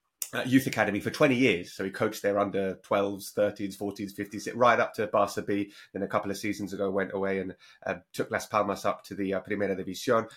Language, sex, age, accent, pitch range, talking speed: English, male, 30-49, British, 100-120 Hz, 225 wpm